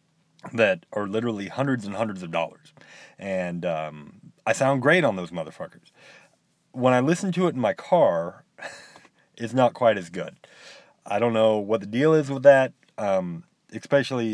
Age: 30-49